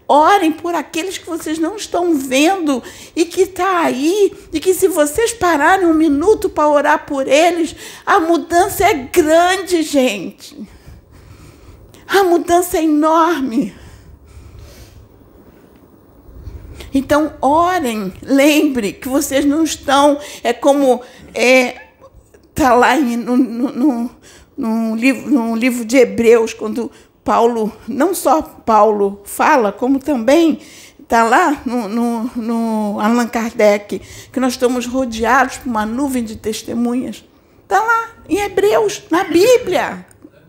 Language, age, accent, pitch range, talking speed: Portuguese, 50-69, Brazilian, 245-340 Hz, 125 wpm